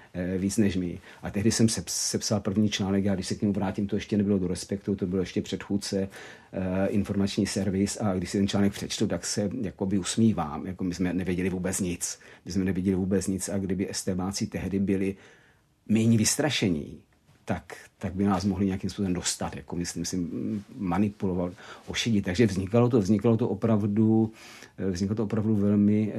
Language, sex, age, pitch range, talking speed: Czech, male, 50-69, 95-110 Hz, 175 wpm